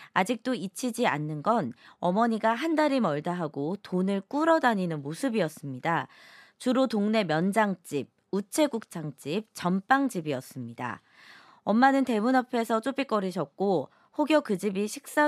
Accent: native